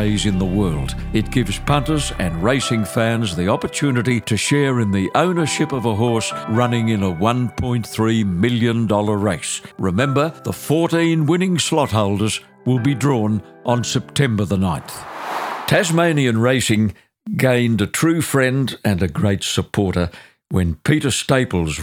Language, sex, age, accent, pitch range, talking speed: English, male, 60-79, British, 95-120 Hz, 140 wpm